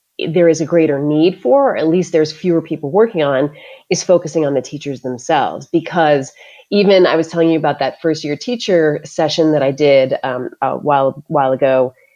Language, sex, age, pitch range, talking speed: English, female, 30-49, 150-185 Hz, 200 wpm